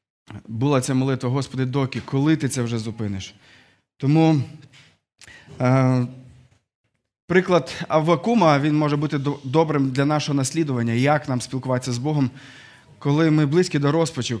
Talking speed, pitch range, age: 130 wpm, 130-155 Hz, 20-39